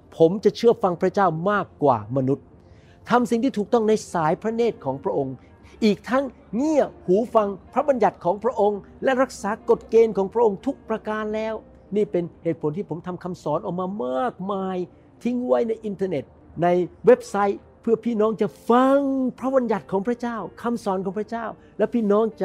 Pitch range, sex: 145-210 Hz, male